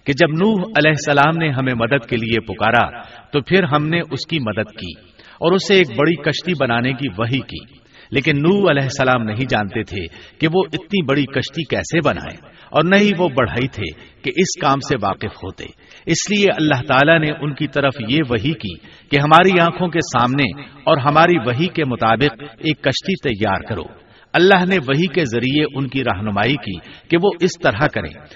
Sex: male